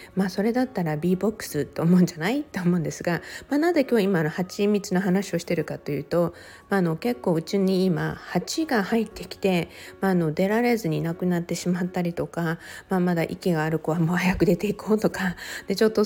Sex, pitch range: female, 160-210 Hz